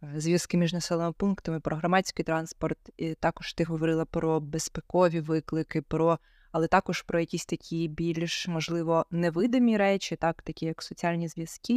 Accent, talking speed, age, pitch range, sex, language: native, 150 wpm, 20-39, 165-180 Hz, female, Ukrainian